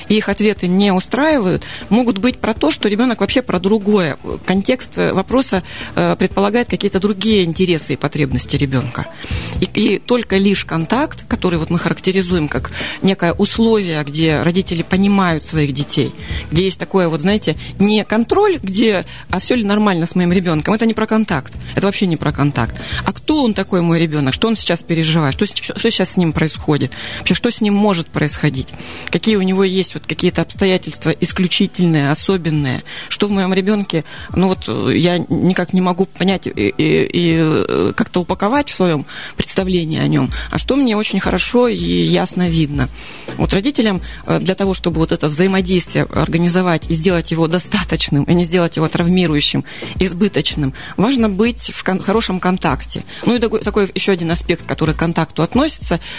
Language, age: Russian, 40-59